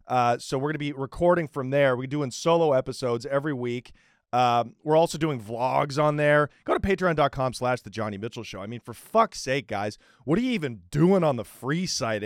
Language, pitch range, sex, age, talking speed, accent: English, 135-190 Hz, male, 30-49, 215 wpm, American